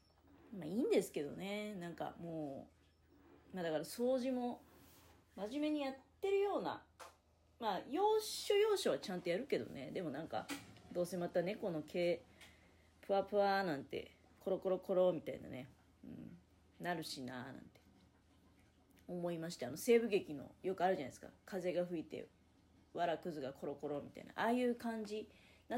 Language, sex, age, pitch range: Japanese, female, 30-49, 135-205 Hz